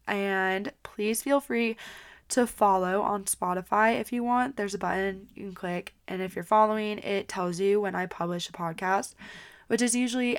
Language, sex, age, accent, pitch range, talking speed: English, female, 10-29, American, 185-215 Hz, 185 wpm